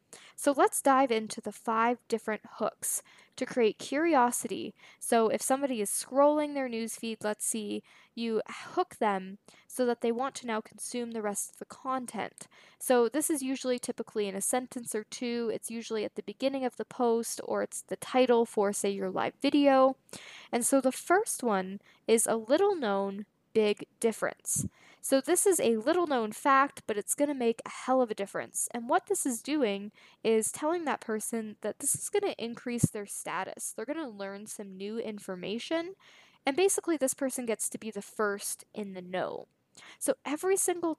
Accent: American